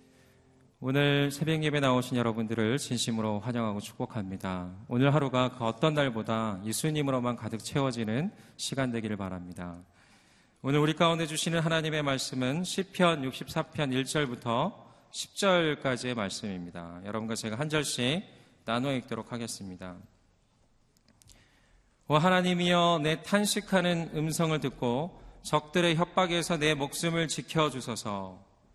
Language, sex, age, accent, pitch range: Korean, male, 40-59, native, 110-155 Hz